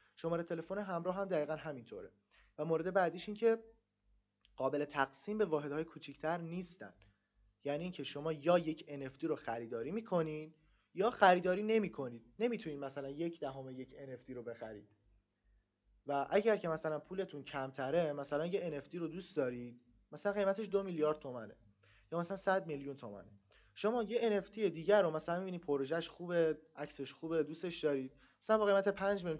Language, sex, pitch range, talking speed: Persian, male, 130-180 Hz, 155 wpm